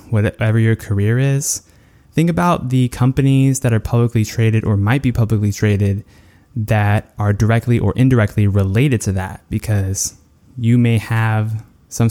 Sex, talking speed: male, 150 wpm